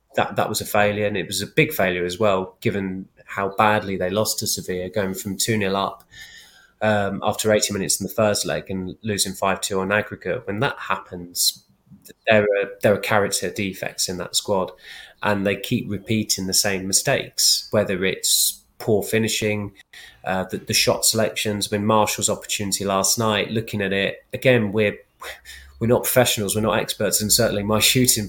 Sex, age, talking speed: male, 20-39, 180 wpm